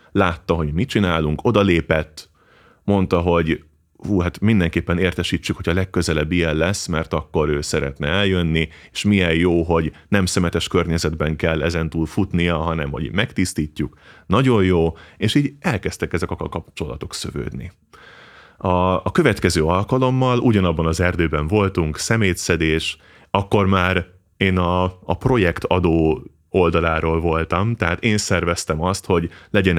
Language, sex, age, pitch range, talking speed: Hungarian, male, 30-49, 80-95 Hz, 135 wpm